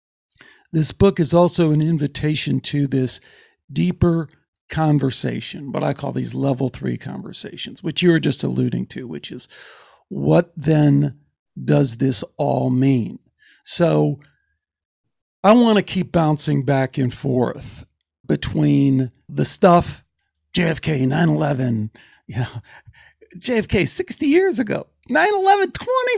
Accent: American